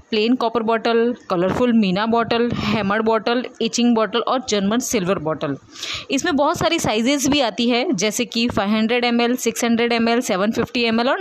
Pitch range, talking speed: 195-255 Hz, 160 wpm